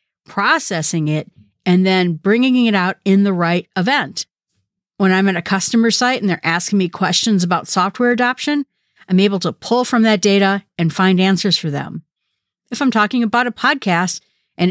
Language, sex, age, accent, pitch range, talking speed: English, female, 50-69, American, 180-235 Hz, 180 wpm